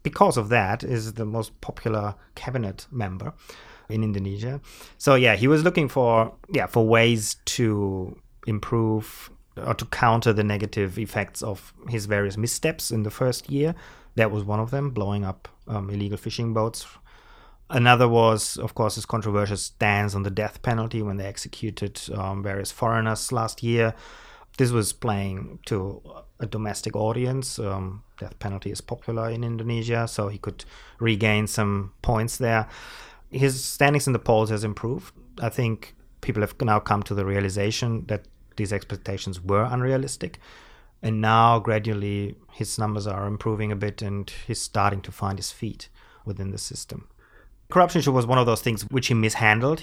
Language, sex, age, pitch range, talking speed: English, male, 30-49, 100-120 Hz, 165 wpm